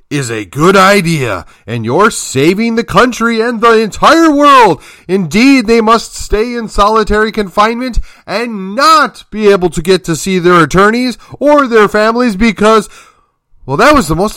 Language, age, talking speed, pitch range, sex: English, 30-49, 165 wpm, 165-255 Hz, male